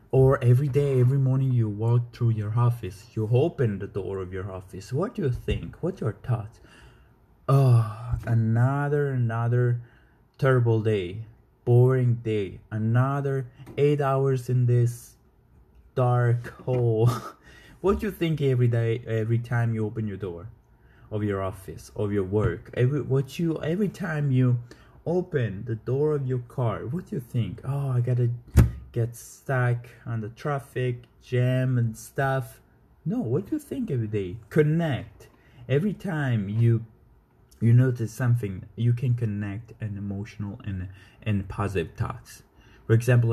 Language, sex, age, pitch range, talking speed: English, male, 20-39, 110-130 Hz, 150 wpm